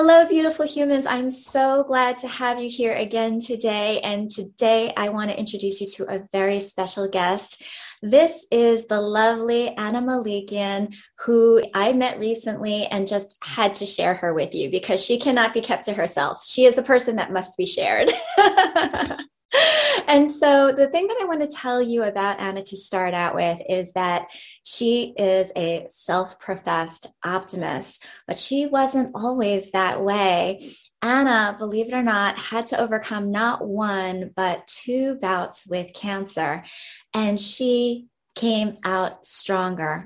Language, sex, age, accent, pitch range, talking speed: English, female, 20-39, American, 190-240 Hz, 160 wpm